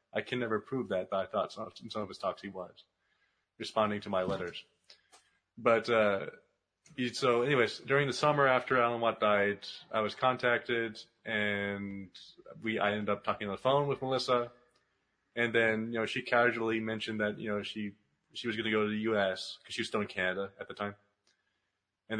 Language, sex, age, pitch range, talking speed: English, male, 30-49, 105-120 Hz, 200 wpm